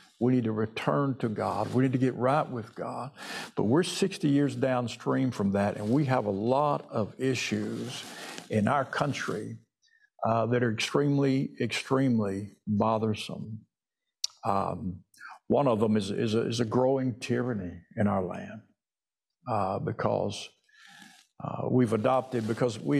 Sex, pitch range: male, 110-130 Hz